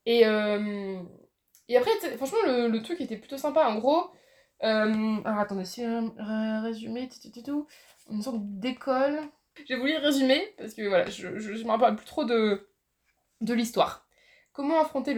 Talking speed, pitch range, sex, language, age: 170 wpm, 210-255 Hz, female, French, 20-39